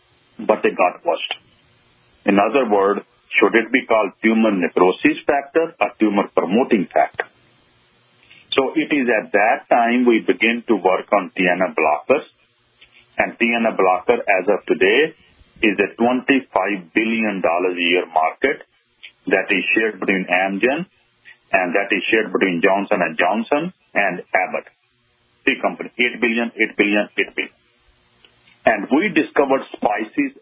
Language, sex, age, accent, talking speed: English, male, 40-59, Indian, 140 wpm